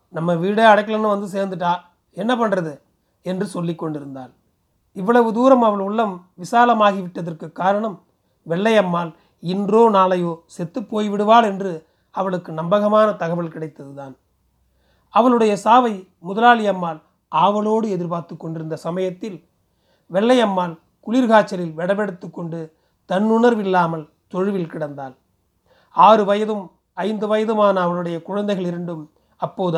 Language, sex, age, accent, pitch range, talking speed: Tamil, male, 30-49, native, 170-215 Hz, 95 wpm